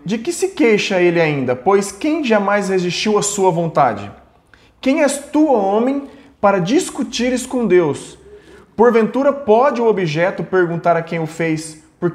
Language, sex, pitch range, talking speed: Portuguese, male, 165-230 Hz, 155 wpm